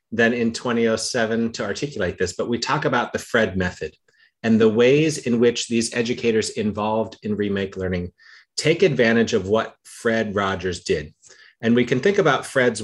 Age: 30-49